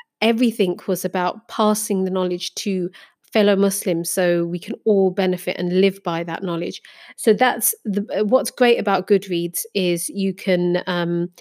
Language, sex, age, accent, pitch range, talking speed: English, female, 30-49, British, 185-215 Hz, 160 wpm